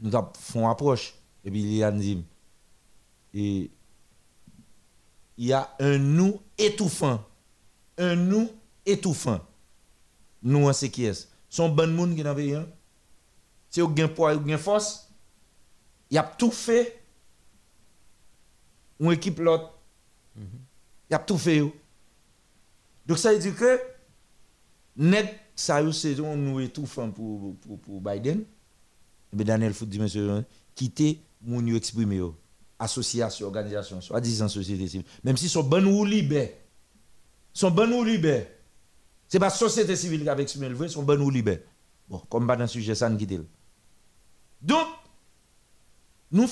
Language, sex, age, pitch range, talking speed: French, male, 50-69, 110-175 Hz, 135 wpm